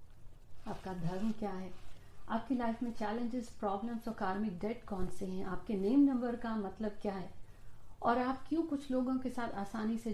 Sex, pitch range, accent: female, 195-245 Hz, native